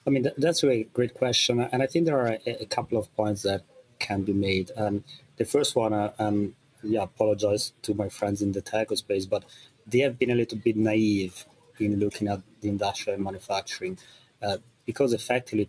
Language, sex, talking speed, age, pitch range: English, male, 200 wpm, 30-49, 100-115 Hz